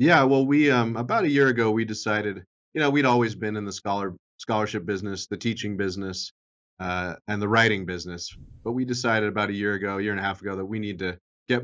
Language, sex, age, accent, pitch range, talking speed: English, male, 30-49, American, 95-115 Hz, 230 wpm